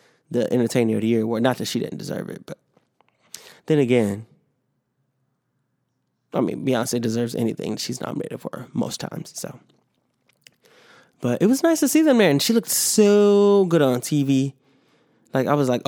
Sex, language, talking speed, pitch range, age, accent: male, English, 170 wpm, 120-150 Hz, 20-39, American